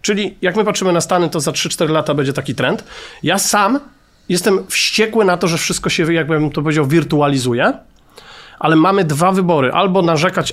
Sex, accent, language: male, native, Polish